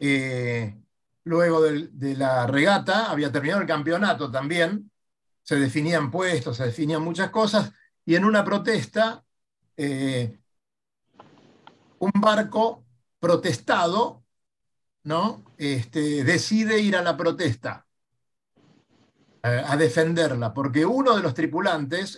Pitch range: 130-205 Hz